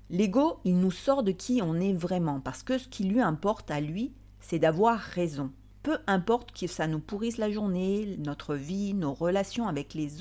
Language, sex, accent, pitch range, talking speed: French, female, French, 155-205 Hz, 200 wpm